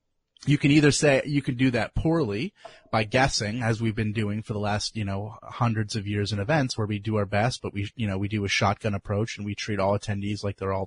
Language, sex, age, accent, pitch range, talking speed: English, male, 30-49, American, 105-125 Hz, 260 wpm